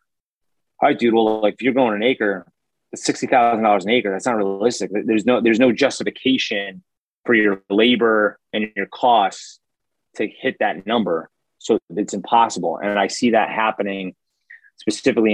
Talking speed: 155 wpm